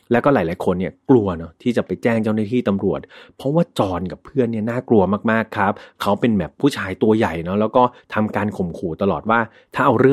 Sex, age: male, 30-49